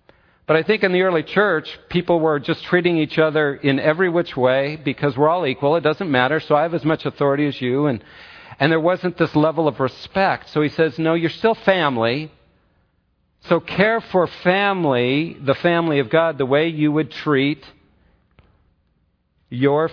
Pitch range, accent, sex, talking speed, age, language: 130-165 Hz, American, male, 185 wpm, 50-69, English